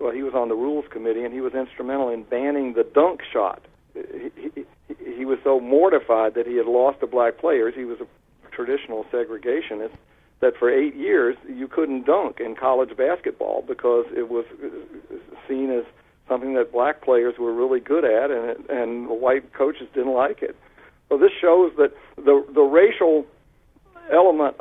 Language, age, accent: English, 60-79, American